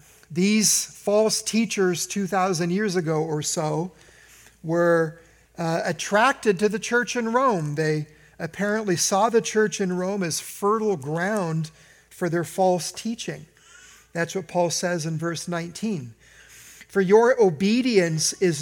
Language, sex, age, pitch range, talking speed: English, male, 50-69, 165-215 Hz, 130 wpm